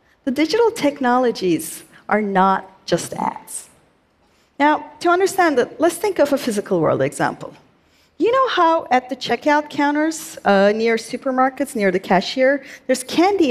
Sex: female